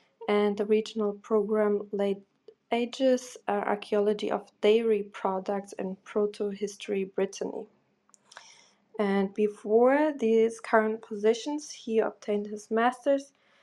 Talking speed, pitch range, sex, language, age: 100 wpm, 205-225 Hz, female, English, 20-39